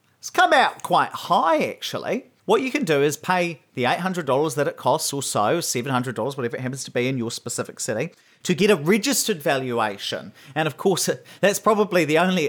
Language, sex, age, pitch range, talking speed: English, male, 30-49, 120-170 Hz, 195 wpm